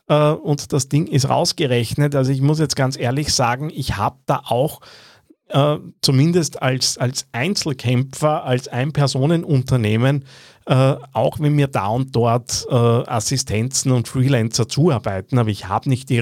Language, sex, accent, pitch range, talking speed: German, male, Austrian, 115-150 Hz, 150 wpm